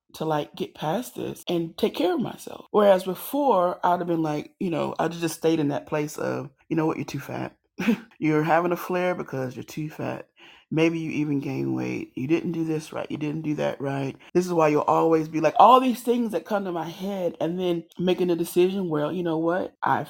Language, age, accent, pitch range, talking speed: English, 30-49, American, 155-180 Hz, 235 wpm